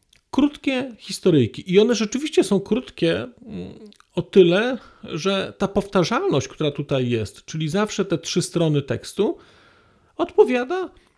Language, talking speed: Polish, 120 wpm